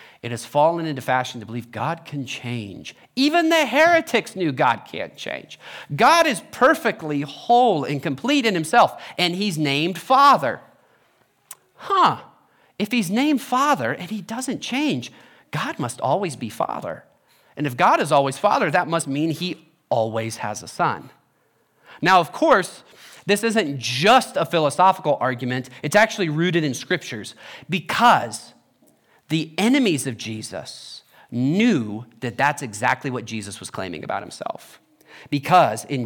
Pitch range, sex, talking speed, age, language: 125-195 Hz, male, 145 wpm, 40-59, English